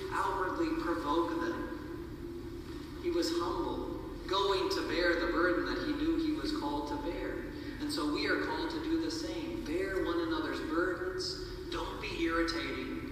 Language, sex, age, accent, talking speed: English, male, 40-59, American, 160 wpm